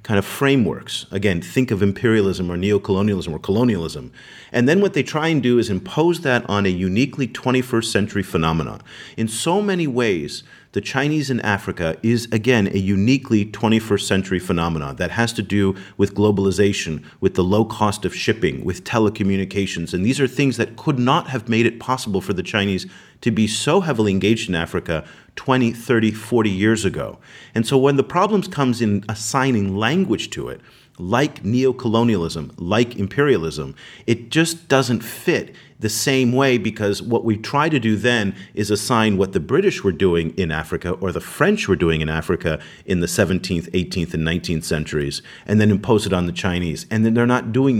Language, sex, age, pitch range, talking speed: English, male, 40-59, 95-125 Hz, 185 wpm